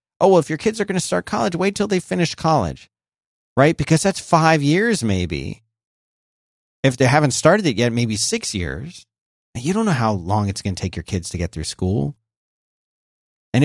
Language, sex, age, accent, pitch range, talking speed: English, male, 30-49, American, 110-150 Hz, 200 wpm